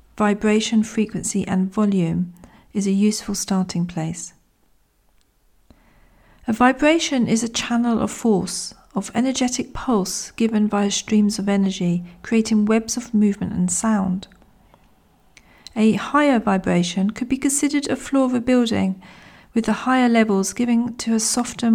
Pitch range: 190-230 Hz